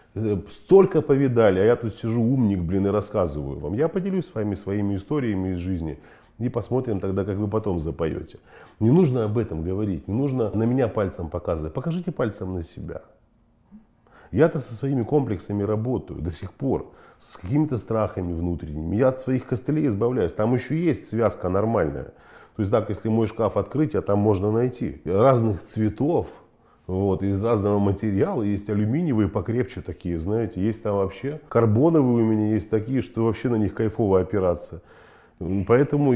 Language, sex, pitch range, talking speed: Russian, male, 95-125 Hz, 165 wpm